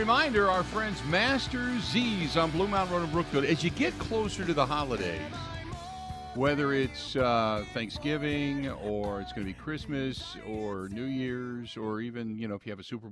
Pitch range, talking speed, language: 100-135 Hz, 185 wpm, English